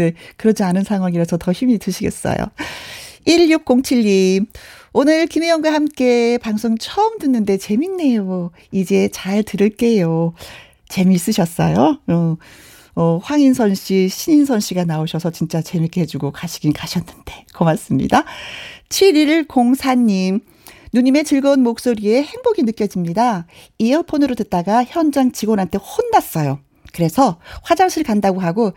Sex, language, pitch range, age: female, Korean, 185-270 Hz, 40-59